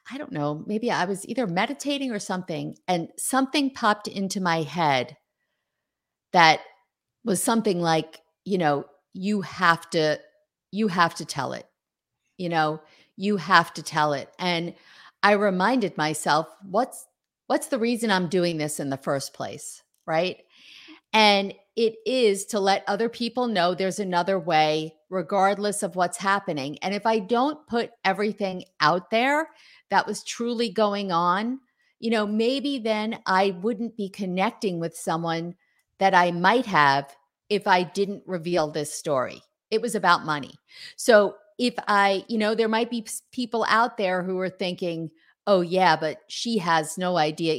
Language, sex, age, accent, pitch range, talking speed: English, female, 50-69, American, 170-220 Hz, 160 wpm